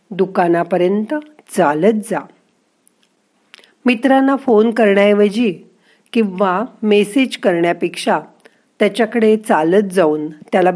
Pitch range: 175-225 Hz